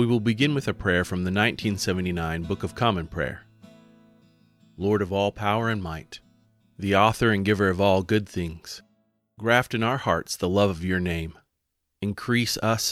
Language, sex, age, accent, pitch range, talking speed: English, male, 30-49, American, 90-110 Hz, 175 wpm